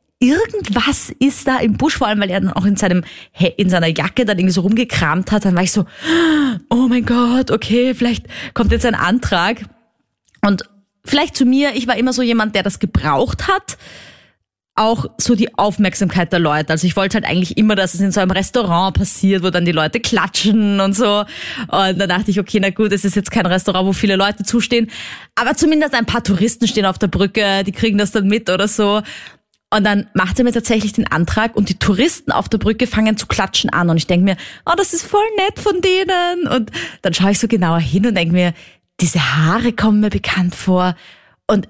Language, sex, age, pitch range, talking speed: German, female, 20-39, 185-230 Hz, 215 wpm